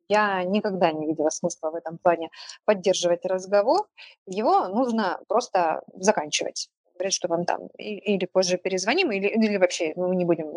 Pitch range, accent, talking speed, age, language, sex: 180-220 Hz, native, 160 wpm, 20-39, Ukrainian, female